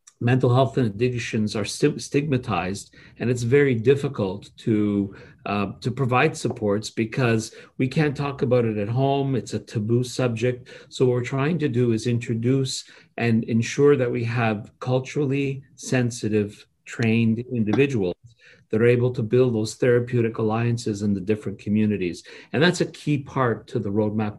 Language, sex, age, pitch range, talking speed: English, male, 50-69, 110-135 Hz, 155 wpm